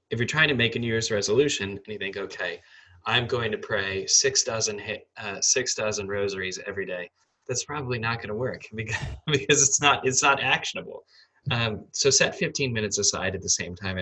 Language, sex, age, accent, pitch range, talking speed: English, male, 10-29, American, 100-130 Hz, 205 wpm